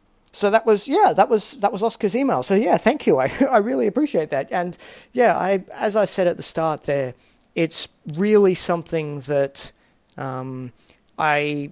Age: 40-59